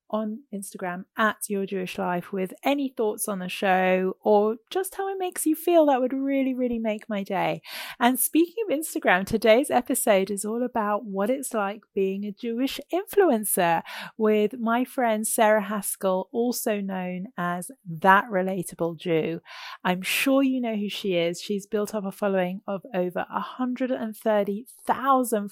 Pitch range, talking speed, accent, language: 195-255 Hz, 160 wpm, British, English